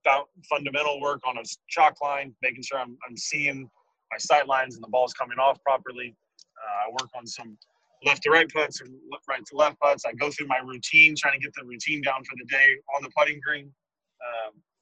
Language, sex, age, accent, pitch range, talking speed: English, male, 20-39, American, 125-145 Hz, 220 wpm